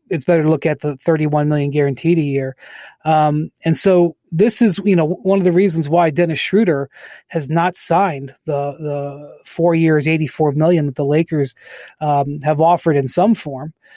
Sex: male